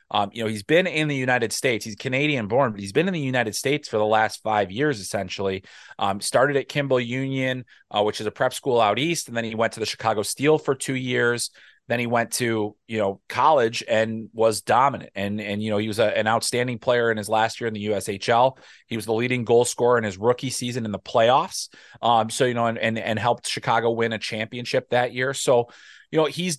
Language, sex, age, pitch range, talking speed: English, male, 30-49, 110-155 Hz, 240 wpm